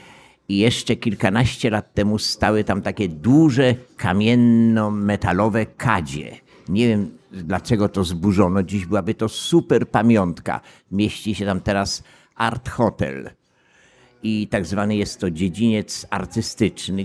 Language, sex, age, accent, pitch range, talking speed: Polish, male, 50-69, native, 95-110 Hz, 120 wpm